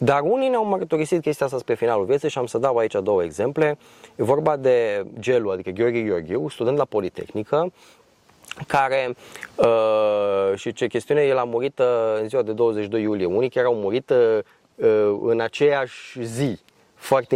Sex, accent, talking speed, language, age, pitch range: male, native, 170 wpm, Romanian, 20-39, 110-160 Hz